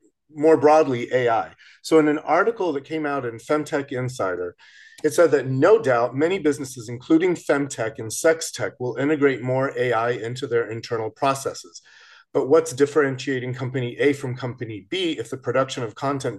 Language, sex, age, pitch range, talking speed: English, male, 40-59, 120-160 Hz, 165 wpm